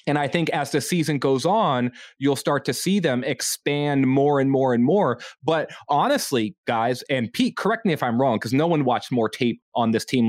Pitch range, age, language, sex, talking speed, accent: 120-165 Hz, 20-39, English, male, 220 wpm, American